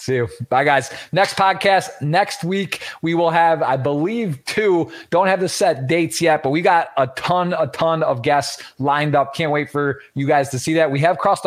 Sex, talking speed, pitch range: male, 220 wpm, 125-155 Hz